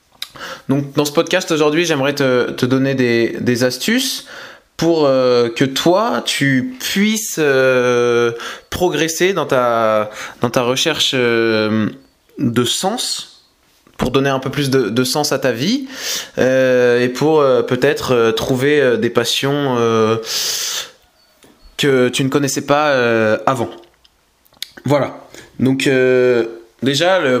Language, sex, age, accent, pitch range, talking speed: French, male, 20-39, French, 125-155 Hz, 130 wpm